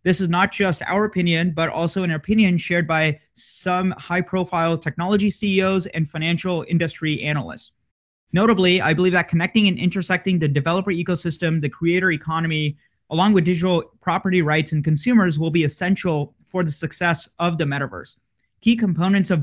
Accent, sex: American, male